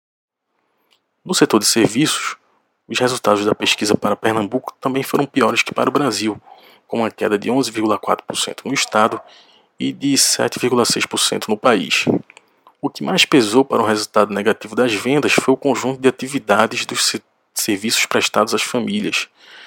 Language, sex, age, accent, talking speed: Portuguese, male, 20-39, Brazilian, 150 wpm